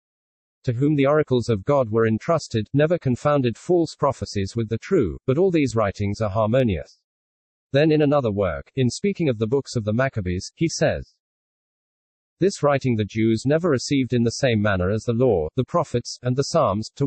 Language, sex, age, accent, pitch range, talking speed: English, male, 40-59, British, 110-140 Hz, 190 wpm